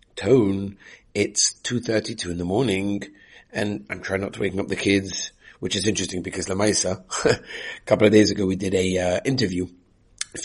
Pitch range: 90-100 Hz